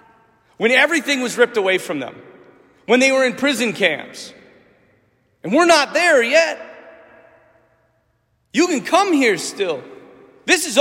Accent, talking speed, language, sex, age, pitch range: American, 140 wpm, English, male, 40-59, 160-245 Hz